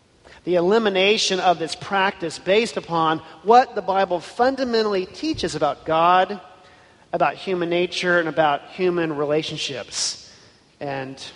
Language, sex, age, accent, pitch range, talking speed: English, male, 40-59, American, 160-205 Hz, 115 wpm